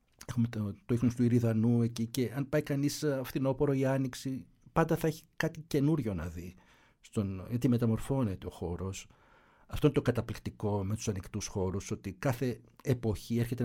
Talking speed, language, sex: 165 wpm, Greek, male